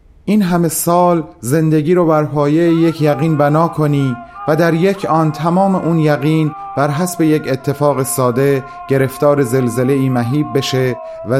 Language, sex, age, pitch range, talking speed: Persian, male, 30-49, 115-155 Hz, 140 wpm